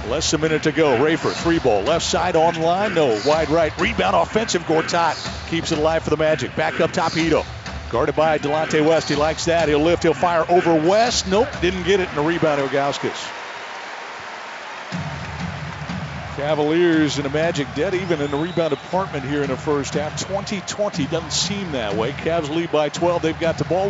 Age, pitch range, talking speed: 50-69, 155-200 Hz, 190 wpm